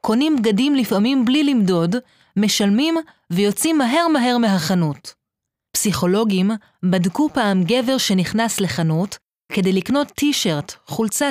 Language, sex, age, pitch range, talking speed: Hebrew, female, 30-49, 180-245 Hz, 110 wpm